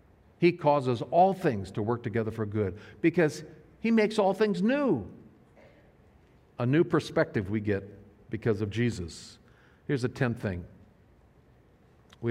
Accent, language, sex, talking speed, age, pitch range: American, English, male, 135 wpm, 50-69, 115-165 Hz